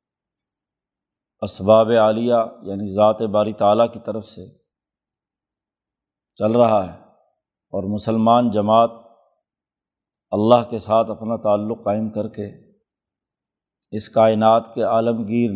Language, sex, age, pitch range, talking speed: Urdu, male, 50-69, 110-120 Hz, 105 wpm